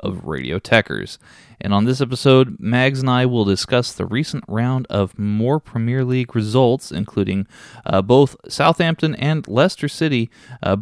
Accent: American